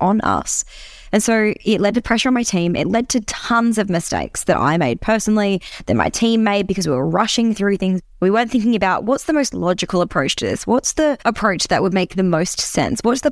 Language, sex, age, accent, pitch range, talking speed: English, female, 20-39, Australian, 180-235 Hz, 240 wpm